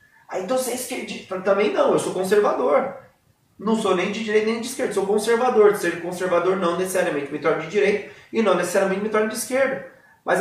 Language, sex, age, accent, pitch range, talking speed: Portuguese, male, 30-49, Brazilian, 185-230 Hz, 210 wpm